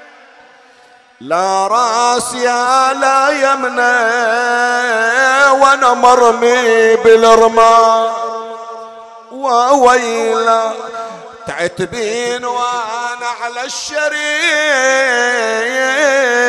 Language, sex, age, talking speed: Arabic, male, 50-69, 45 wpm